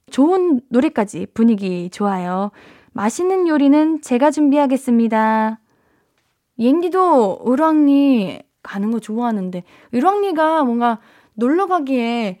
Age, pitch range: 10-29, 220-300 Hz